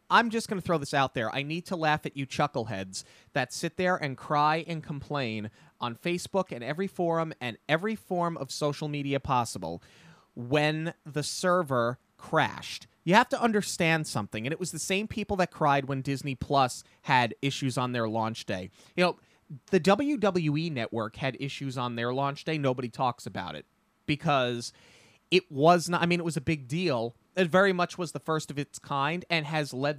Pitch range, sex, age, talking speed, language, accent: 125-180 Hz, male, 30-49, 195 wpm, English, American